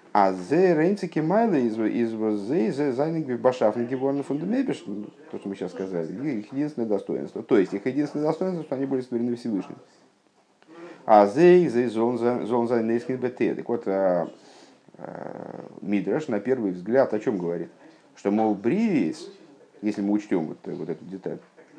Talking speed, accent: 110 wpm, native